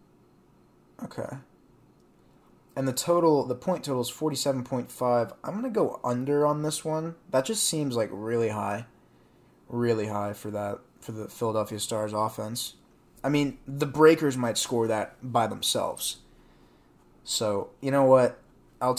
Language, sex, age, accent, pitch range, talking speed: English, male, 20-39, American, 110-135 Hz, 150 wpm